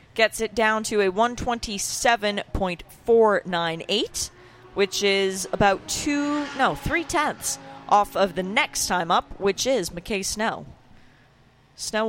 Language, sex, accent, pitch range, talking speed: English, female, American, 165-220 Hz, 110 wpm